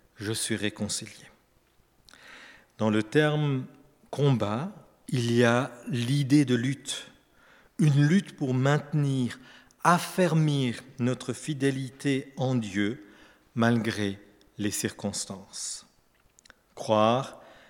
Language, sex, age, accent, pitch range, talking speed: French, male, 50-69, French, 115-150 Hz, 90 wpm